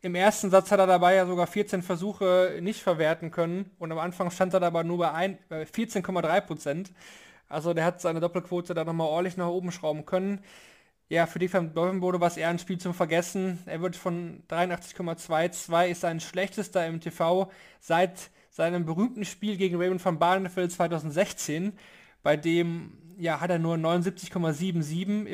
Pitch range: 165-190 Hz